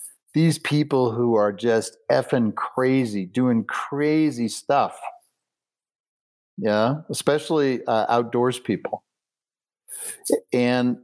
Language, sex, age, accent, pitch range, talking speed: English, male, 50-69, American, 120-150 Hz, 85 wpm